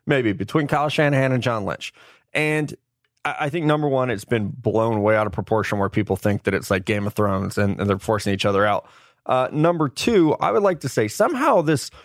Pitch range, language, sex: 110-160 Hz, English, male